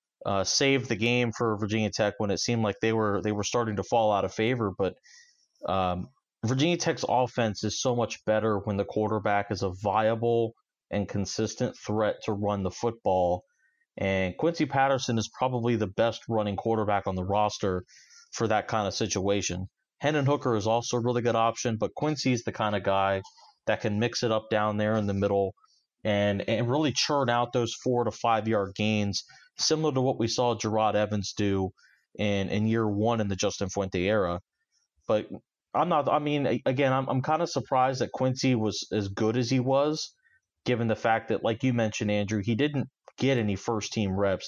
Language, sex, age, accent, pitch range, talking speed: English, male, 30-49, American, 100-125 Hz, 195 wpm